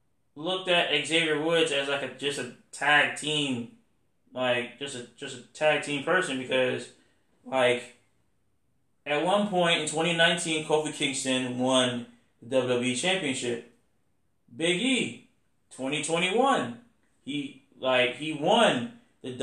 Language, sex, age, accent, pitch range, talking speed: English, male, 20-39, American, 130-200 Hz, 120 wpm